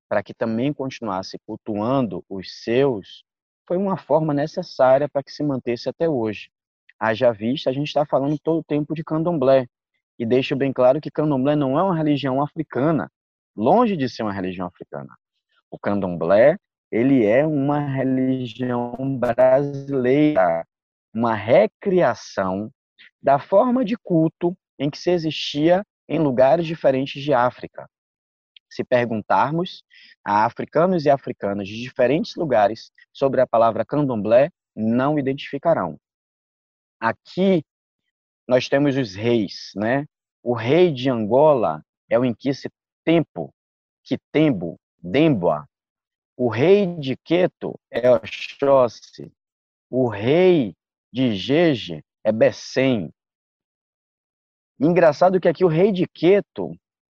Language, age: Portuguese, 20-39